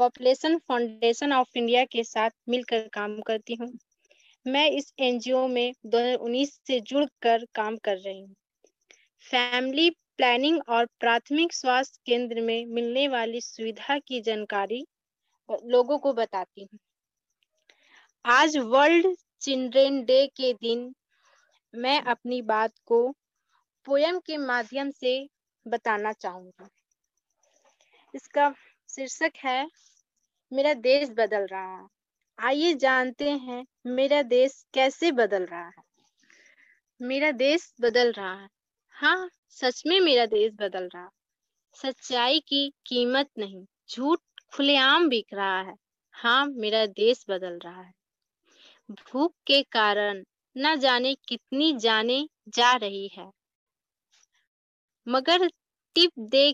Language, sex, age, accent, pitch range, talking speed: Hindi, female, 20-39, native, 225-280 Hz, 120 wpm